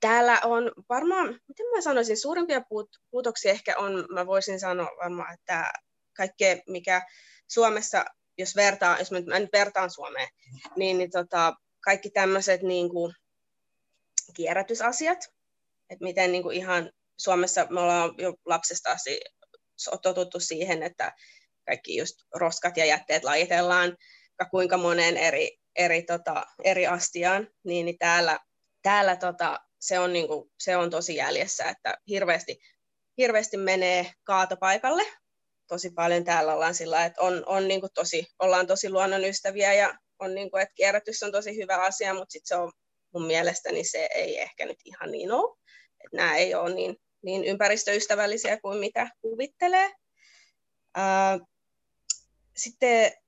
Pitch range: 175-210 Hz